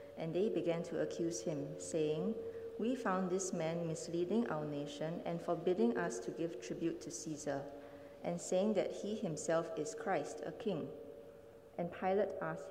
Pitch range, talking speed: 160-220 Hz, 160 wpm